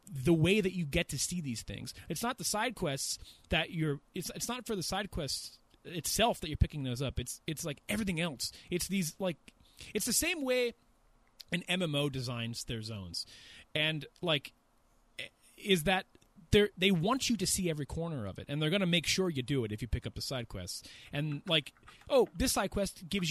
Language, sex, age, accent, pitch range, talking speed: English, male, 30-49, American, 130-195 Hz, 215 wpm